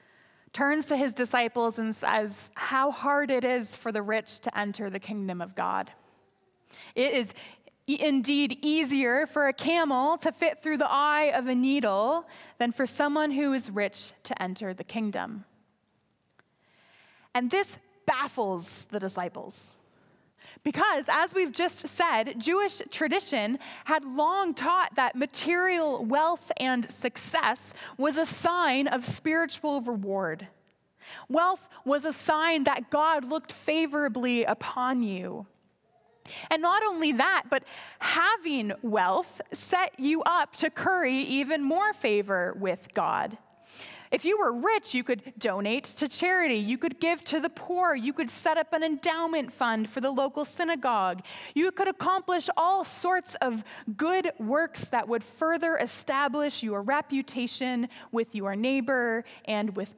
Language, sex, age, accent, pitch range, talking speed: English, female, 20-39, American, 240-325 Hz, 140 wpm